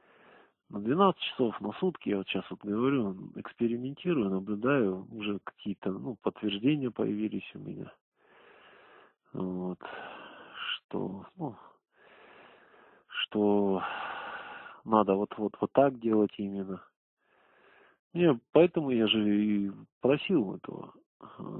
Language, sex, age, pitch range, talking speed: Russian, male, 40-59, 95-120 Hz, 95 wpm